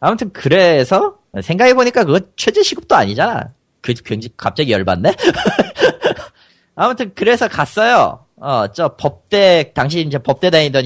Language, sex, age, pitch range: Korean, male, 30-49, 115-180 Hz